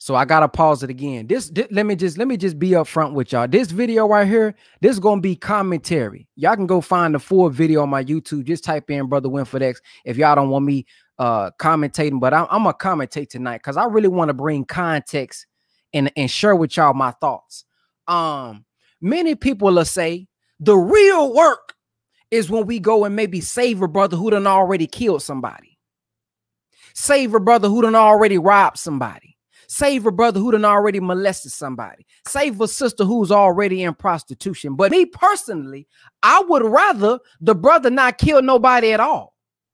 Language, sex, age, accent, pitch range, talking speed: English, male, 20-39, American, 160-245 Hz, 195 wpm